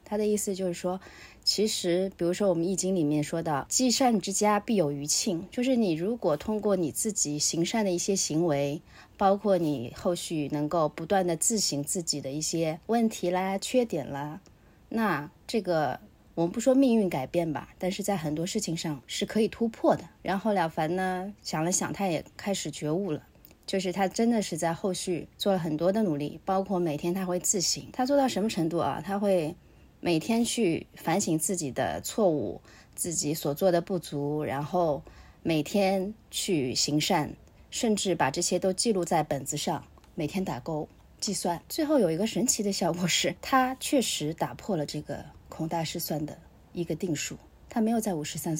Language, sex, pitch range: Chinese, female, 155-200 Hz